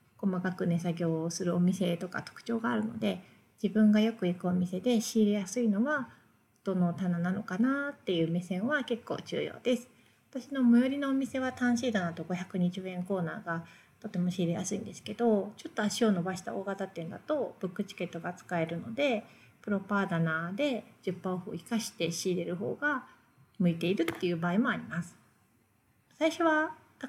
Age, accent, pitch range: 30-49, native, 180-235 Hz